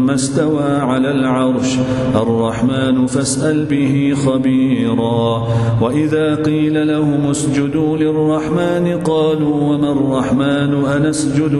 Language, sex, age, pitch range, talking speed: English, male, 40-59, 120-145 Hz, 85 wpm